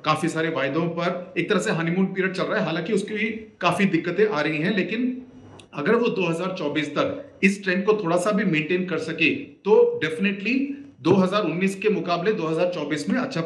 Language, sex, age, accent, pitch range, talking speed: Hindi, male, 40-59, native, 155-215 Hz, 185 wpm